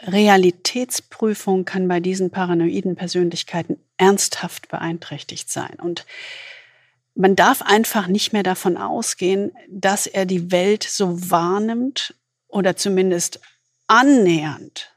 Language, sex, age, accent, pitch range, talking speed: German, female, 50-69, German, 170-205 Hz, 105 wpm